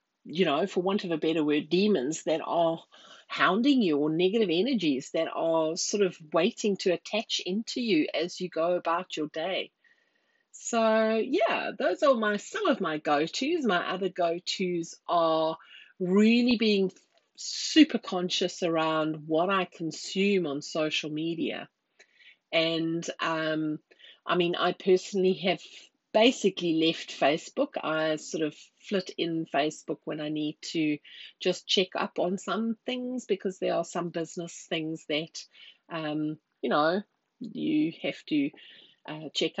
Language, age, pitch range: English, 40-59, 160-205 Hz